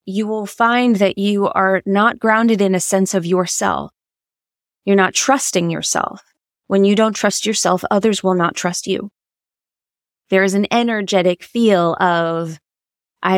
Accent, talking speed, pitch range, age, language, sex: American, 150 wpm, 185-215 Hz, 20-39, English, female